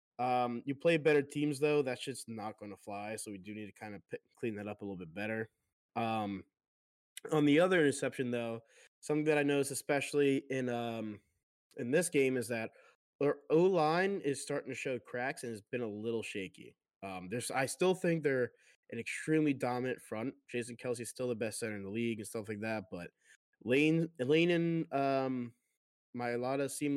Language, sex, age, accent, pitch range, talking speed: English, male, 20-39, American, 115-145 Hz, 195 wpm